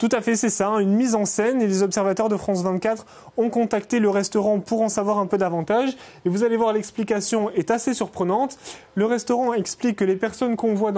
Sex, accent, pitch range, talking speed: male, French, 195-235 Hz, 225 wpm